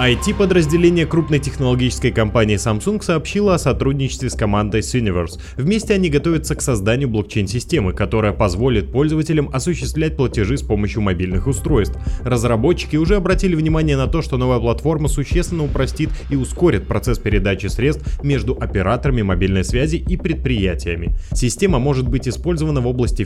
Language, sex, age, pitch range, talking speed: Russian, male, 20-39, 105-150 Hz, 140 wpm